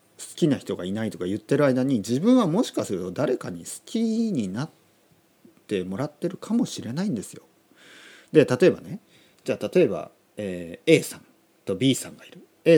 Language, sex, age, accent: Japanese, male, 40-59, native